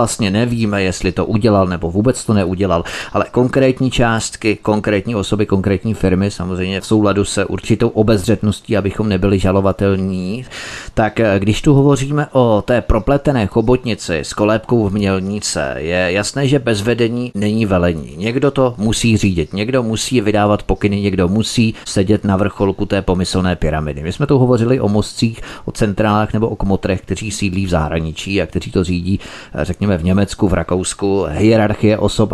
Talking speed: 160 wpm